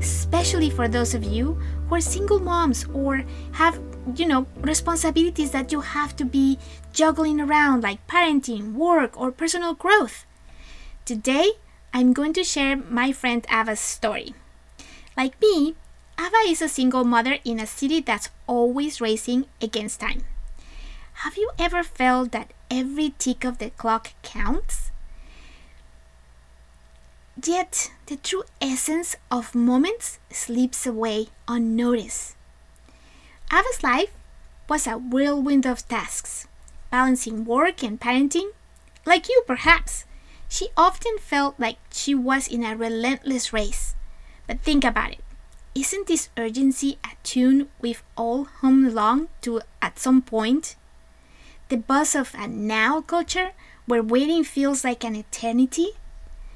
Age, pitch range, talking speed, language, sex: 20-39, 220-300 Hz, 130 wpm, English, female